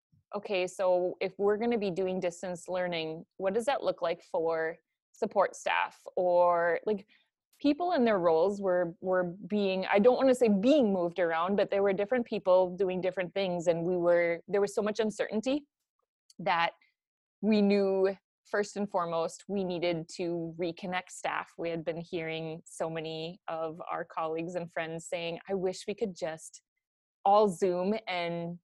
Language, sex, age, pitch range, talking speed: English, female, 20-39, 170-210 Hz, 170 wpm